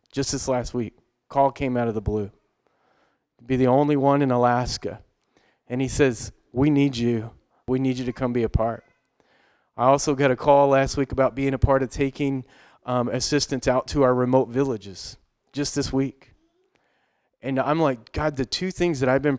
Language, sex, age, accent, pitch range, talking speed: English, male, 30-49, American, 125-150 Hz, 195 wpm